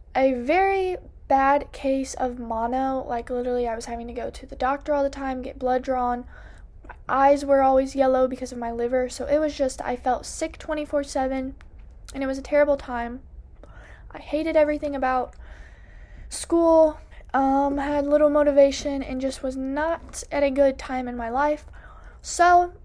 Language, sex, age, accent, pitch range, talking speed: English, female, 20-39, American, 260-290 Hz, 180 wpm